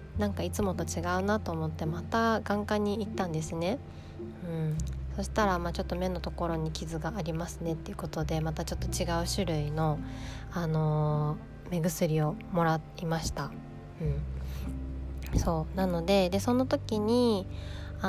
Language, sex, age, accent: Japanese, female, 20-39, native